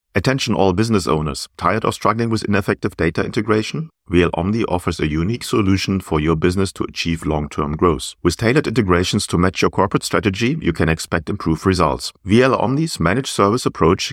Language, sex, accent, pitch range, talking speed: English, male, German, 85-105 Hz, 170 wpm